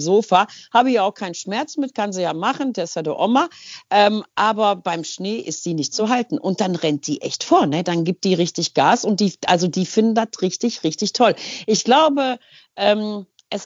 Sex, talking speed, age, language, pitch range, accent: female, 215 wpm, 40-59, German, 180-225 Hz, German